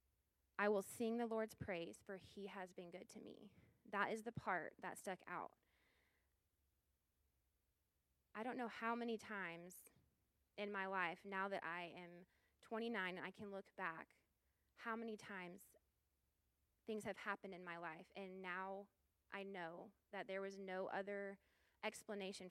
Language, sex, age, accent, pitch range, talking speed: English, female, 20-39, American, 175-205 Hz, 155 wpm